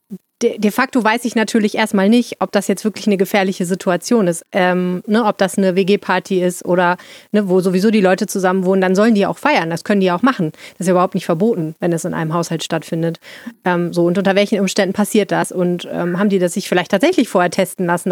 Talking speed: 235 wpm